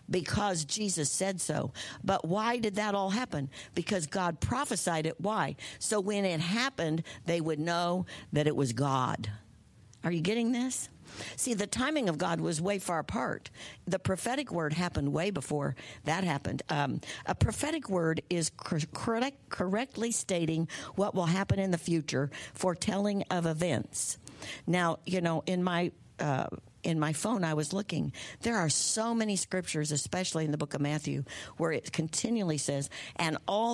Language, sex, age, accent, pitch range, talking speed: English, female, 60-79, American, 145-195 Hz, 165 wpm